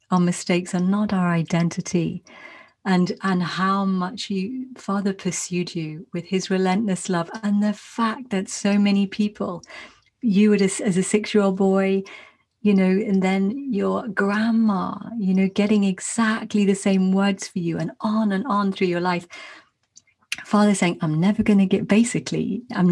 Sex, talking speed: female, 170 wpm